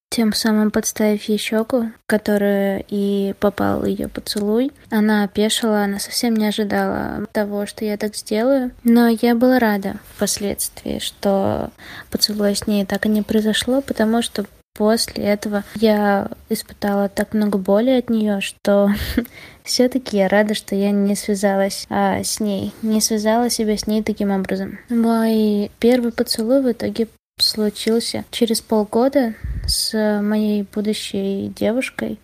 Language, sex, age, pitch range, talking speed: Russian, female, 20-39, 205-230 Hz, 140 wpm